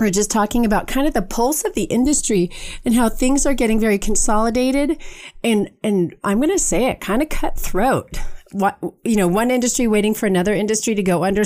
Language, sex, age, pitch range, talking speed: English, female, 30-49, 190-240 Hz, 210 wpm